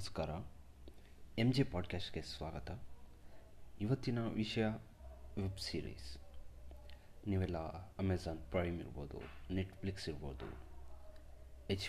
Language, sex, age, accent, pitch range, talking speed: Kannada, male, 30-49, native, 75-95 Hz, 80 wpm